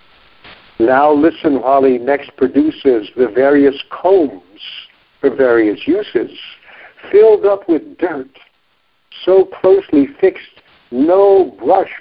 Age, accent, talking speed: 60-79, American, 100 wpm